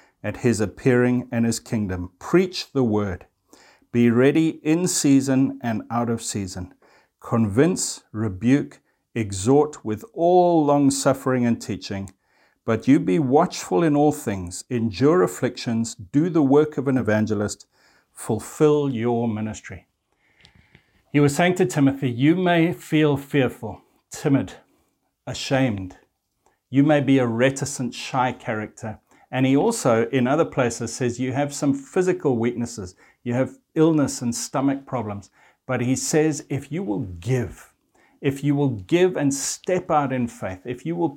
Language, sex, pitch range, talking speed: English, male, 115-145 Hz, 145 wpm